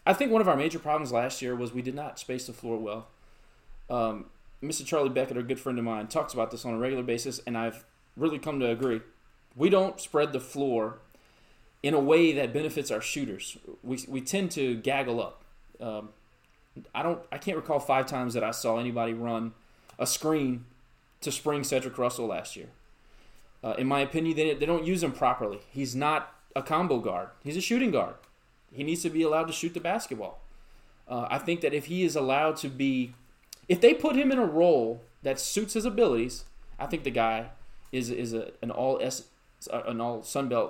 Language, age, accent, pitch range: English, 20-39, American, 125-170 Hz